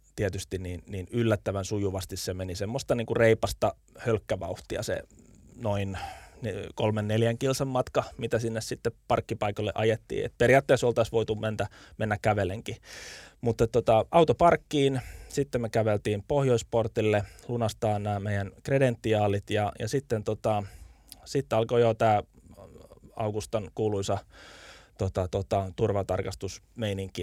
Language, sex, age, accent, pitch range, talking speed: Finnish, male, 20-39, native, 95-115 Hz, 115 wpm